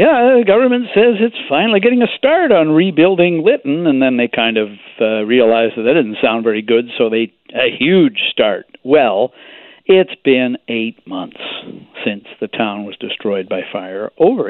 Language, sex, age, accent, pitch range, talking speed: English, male, 60-79, American, 115-170 Hz, 180 wpm